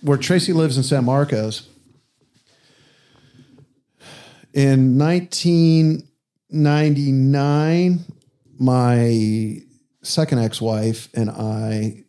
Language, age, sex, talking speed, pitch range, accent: English, 50-69, male, 65 wpm, 110-140 Hz, American